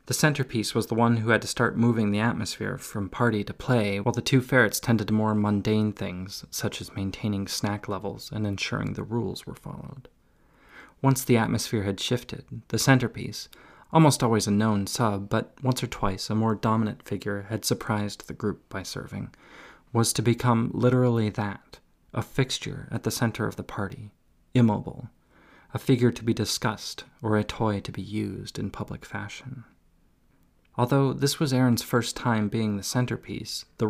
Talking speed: 175 wpm